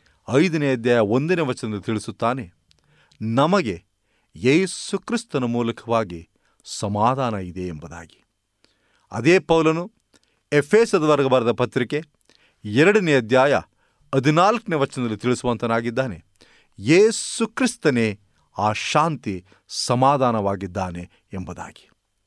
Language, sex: Kannada, male